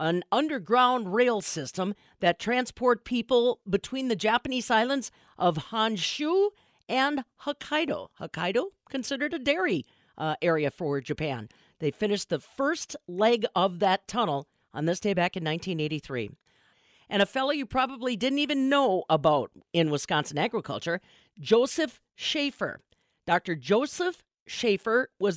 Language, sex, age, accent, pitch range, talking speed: English, female, 50-69, American, 170-270 Hz, 130 wpm